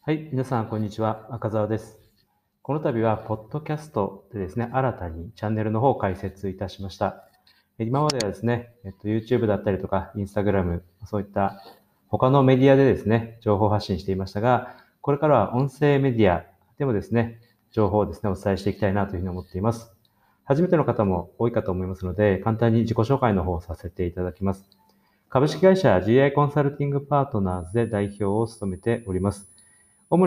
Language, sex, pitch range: Japanese, male, 95-125 Hz